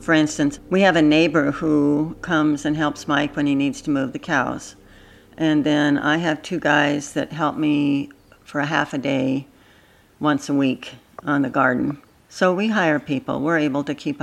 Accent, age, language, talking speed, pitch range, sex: American, 60-79, English, 195 wpm, 150-180 Hz, female